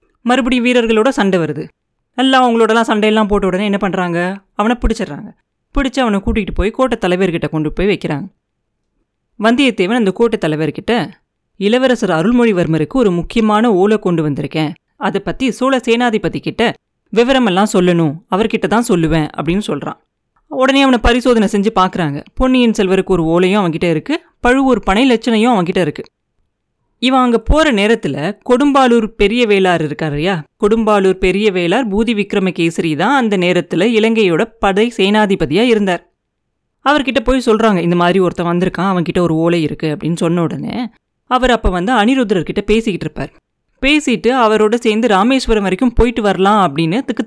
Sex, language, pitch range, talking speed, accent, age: female, Tamil, 180-240 Hz, 140 wpm, native, 30-49